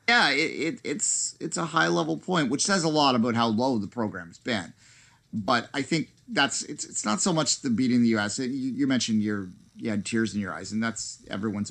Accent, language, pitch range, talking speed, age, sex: American, English, 95-125 Hz, 230 wpm, 30-49, male